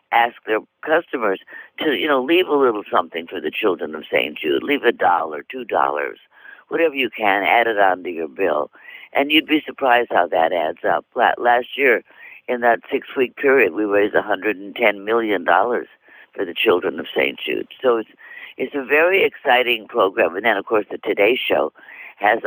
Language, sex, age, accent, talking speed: English, female, 60-79, American, 185 wpm